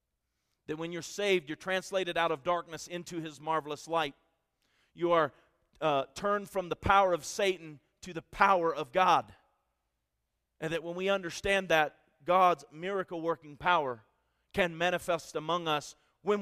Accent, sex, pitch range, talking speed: American, male, 150-180 Hz, 150 wpm